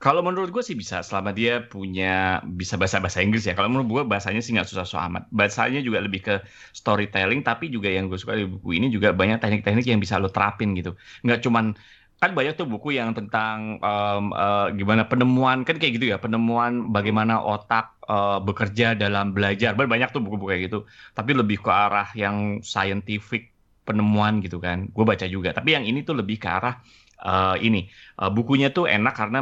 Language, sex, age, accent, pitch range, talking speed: Indonesian, male, 20-39, native, 95-115 Hz, 195 wpm